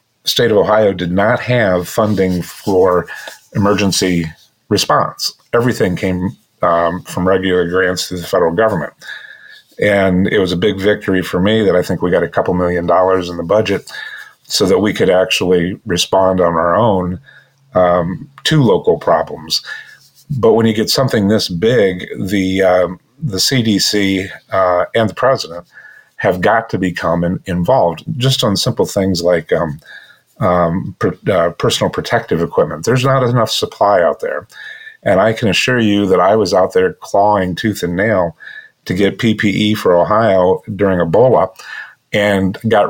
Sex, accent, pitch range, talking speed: male, American, 90-110 Hz, 160 wpm